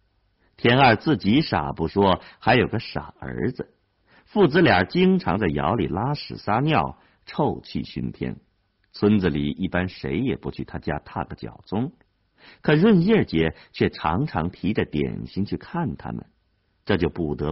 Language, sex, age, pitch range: Chinese, male, 50-69, 80-115 Hz